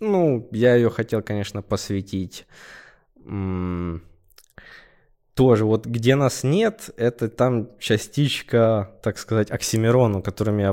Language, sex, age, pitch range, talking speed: Russian, male, 20-39, 100-125 Hz, 110 wpm